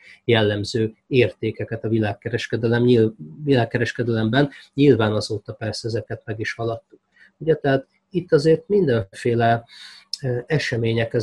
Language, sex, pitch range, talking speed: Hungarian, male, 110-125 Hz, 100 wpm